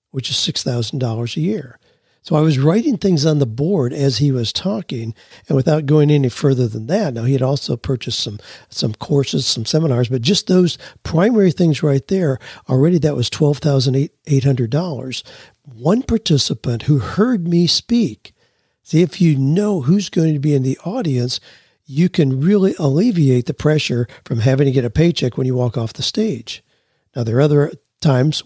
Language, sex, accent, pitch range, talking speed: English, male, American, 130-165 Hz, 180 wpm